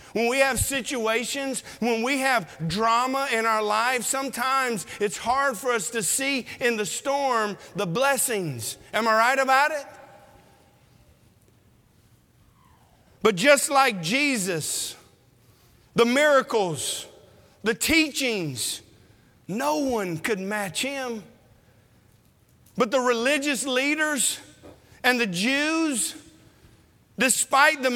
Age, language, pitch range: 50-69, English, 220-275 Hz